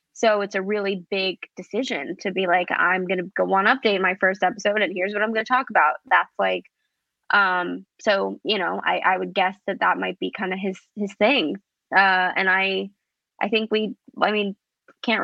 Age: 20-39